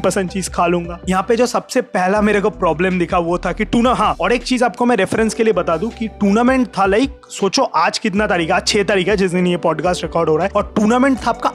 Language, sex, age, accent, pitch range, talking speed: Hindi, male, 20-39, native, 185-225 Hz, 60 wpm